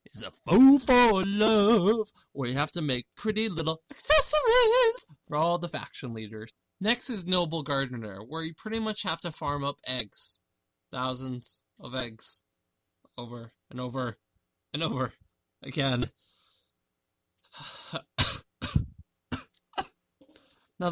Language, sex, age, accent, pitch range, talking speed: English, male, 20-39, American, 120-165 Hz, 120 wpm